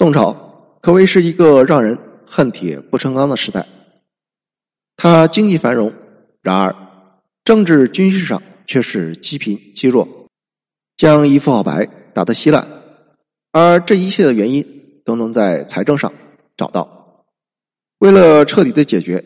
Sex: male